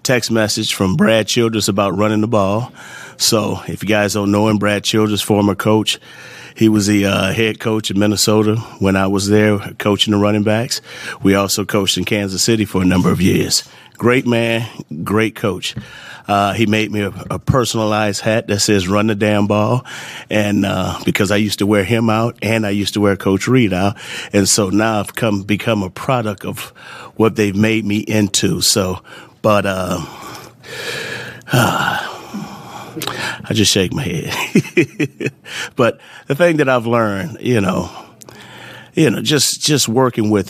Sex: male